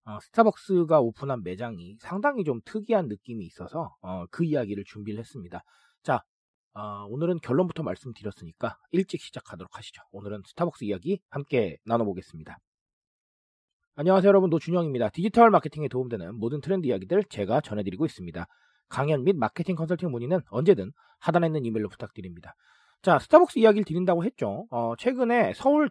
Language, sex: Korean, male